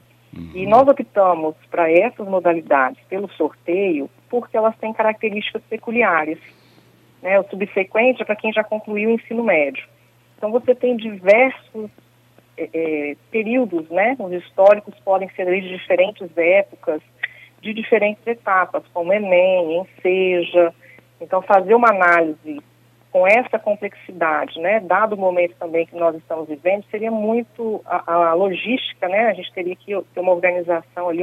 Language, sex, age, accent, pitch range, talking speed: Portuguese, female, 40-59, Brazilian, 165-215 Hz, 140 wpm